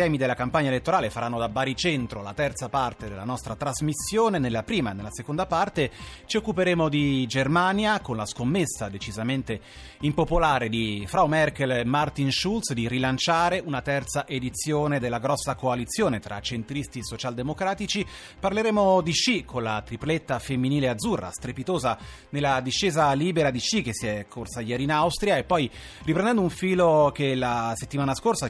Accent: native